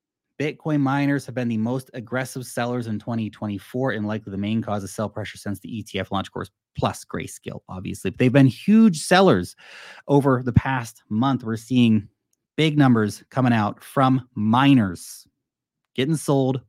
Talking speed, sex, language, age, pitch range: 160 wpm, male, English, 30-49, 105-140 Hz